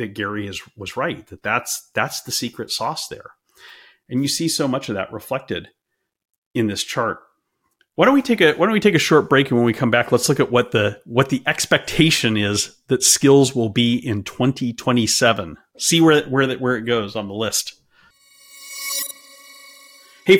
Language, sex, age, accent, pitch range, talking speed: English, male, 40-59, American, 115-165 Hz, 195 wpm